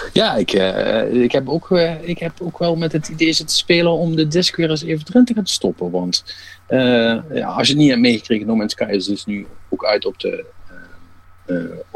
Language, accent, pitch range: Dutch, Dutch, 90-145 Hz